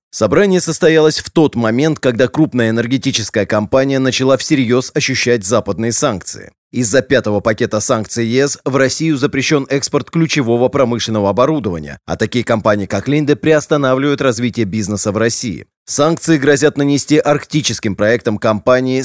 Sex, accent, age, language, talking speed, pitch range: male, native, 20-39, Russian, 130 wpm, 115-145 Hz